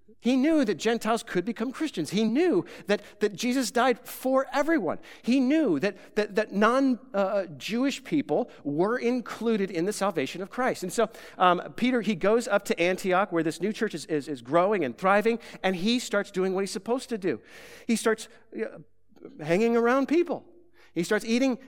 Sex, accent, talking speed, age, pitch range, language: male, American, 185 wpm, 50-69, 180-245 Hz, English